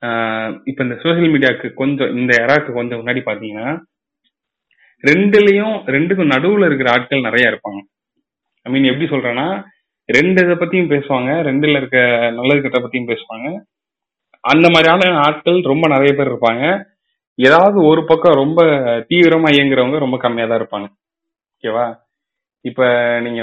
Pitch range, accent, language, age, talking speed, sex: 120-165 Hz, native, Tamil, 30-49, 125 wpm, male